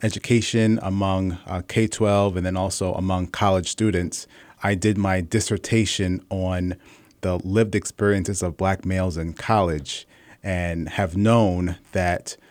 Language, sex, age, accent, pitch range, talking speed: English, male, 30-49, American, 90-105 Hz, 130 wpm